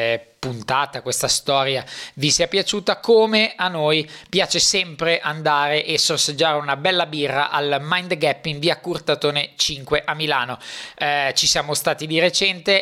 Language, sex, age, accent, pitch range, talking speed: Italian, male, 20-39, native, 150-180 Hz, 150 wpm